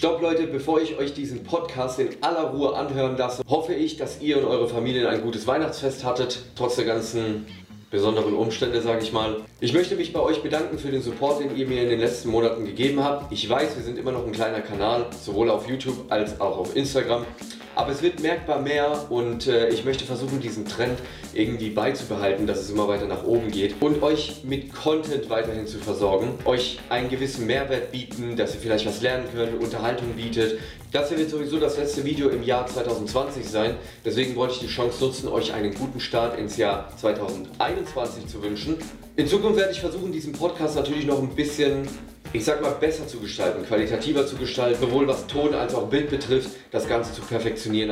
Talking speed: 205 wpm